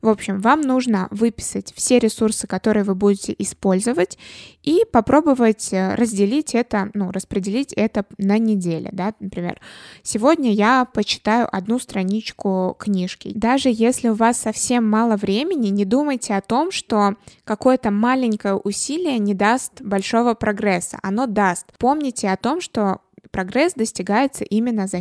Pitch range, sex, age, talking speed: 195-235 Hz, female, 20-39, 135 wpm